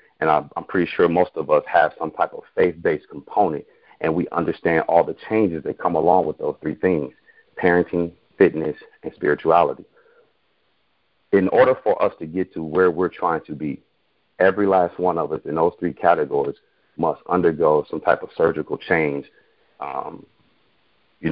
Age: 40-59